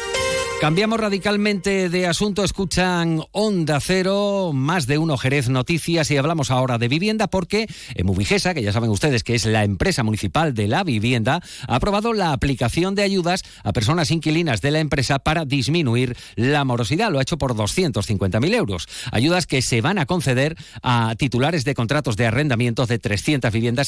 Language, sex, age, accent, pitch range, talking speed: Spanish, male, 50-69, Spanish, 115-165 Hz, 175 wpm